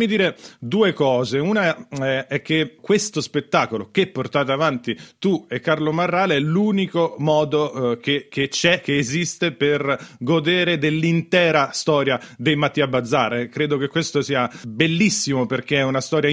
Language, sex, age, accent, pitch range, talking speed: Italian, male, 30-49, native, 130-165 Hz, 145 wpm